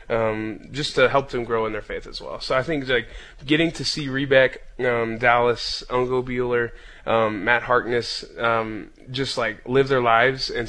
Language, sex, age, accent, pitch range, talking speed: English, male, 20-39, American, 110-130 Hz, 185 wpm